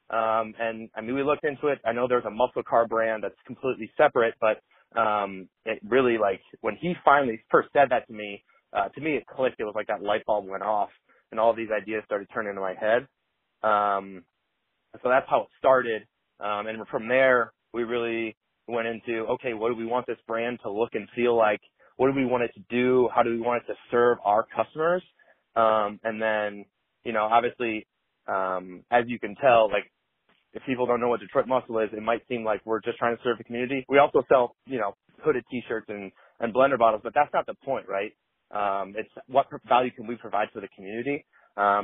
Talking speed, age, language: 220 wpm, 30-49, English